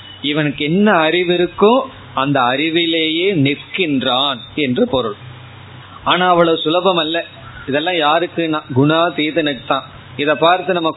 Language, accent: Tamil, native